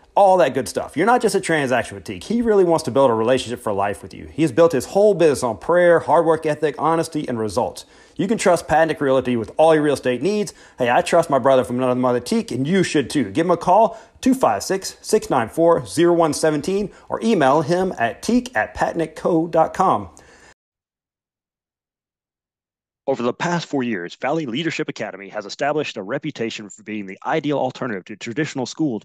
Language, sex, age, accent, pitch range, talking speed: English, male, 30-49, American, 120-165 Hz, 190 wpm